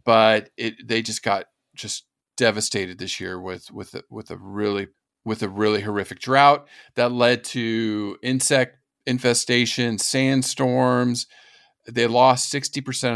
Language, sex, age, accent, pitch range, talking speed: English, male, 40-59, American, 105-130 Hz, 130 wpm